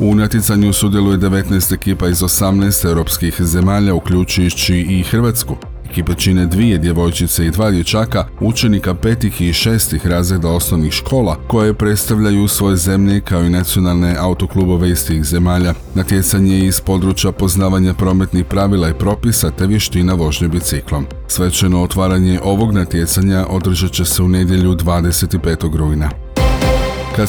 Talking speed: 135 wpm